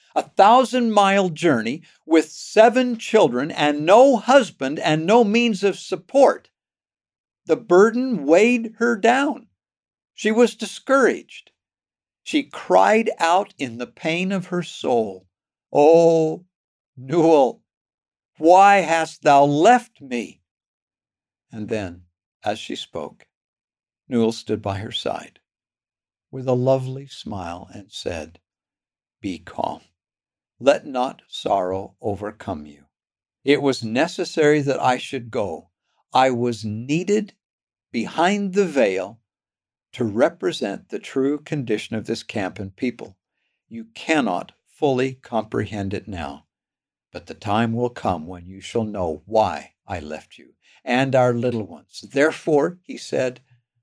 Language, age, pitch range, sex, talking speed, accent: English, 60-79, 110-180 Hz, male, 125 wpm, American